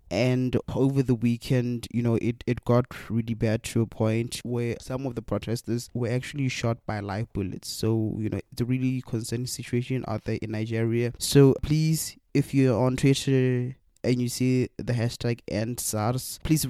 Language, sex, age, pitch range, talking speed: English, male, 20-39, 110-125 Hz, 185 wpm